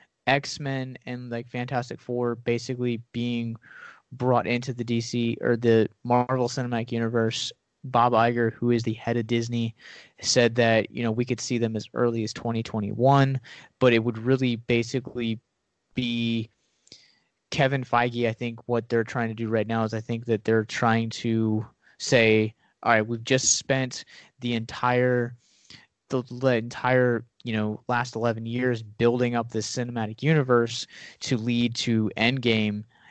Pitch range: 115-125 Hz